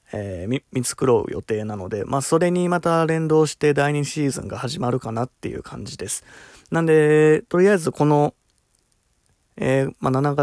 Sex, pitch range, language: male, 115-145 Hz, Japanese